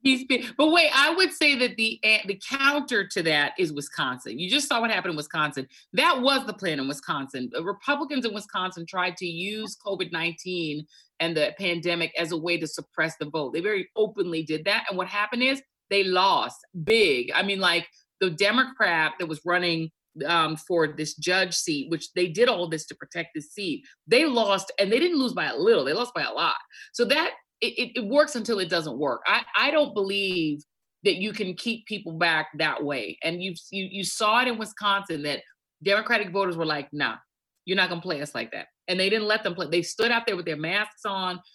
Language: English